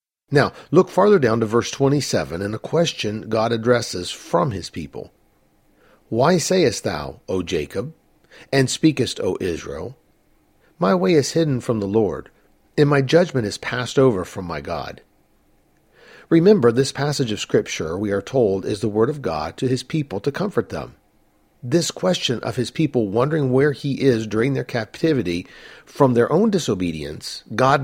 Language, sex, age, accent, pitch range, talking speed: English, male, 50-69, American, 110-155 Hz, 165 wpm